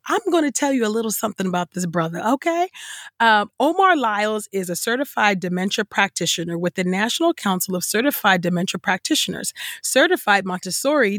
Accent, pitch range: American, 180-250 Hz